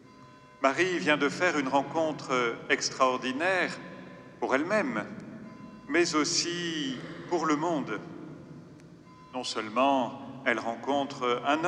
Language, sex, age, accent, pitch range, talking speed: French, male, 40-59, French, 130-170 Hz, 100 wpm